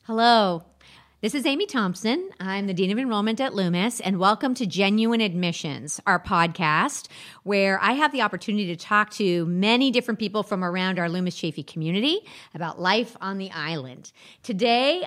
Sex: female